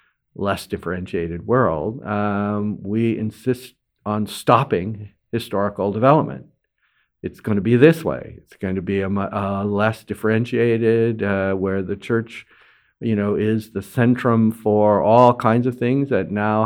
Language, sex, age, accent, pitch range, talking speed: English, male, 50-69, American, 100-125 Hz, 145 wpm